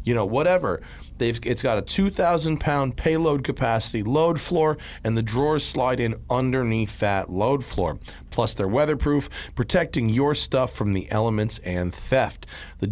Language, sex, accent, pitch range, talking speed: English, male, American, 110-150 Hz, 155 wpm